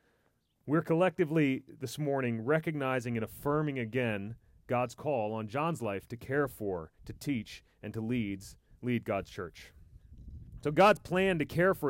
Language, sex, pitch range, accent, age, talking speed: English, male, 105-150 Hz, American, 30-49, 150 wpm